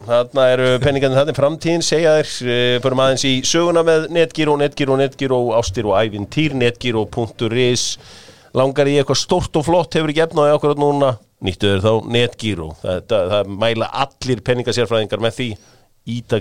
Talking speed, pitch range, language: 155 wpm, 100-135 Hz, English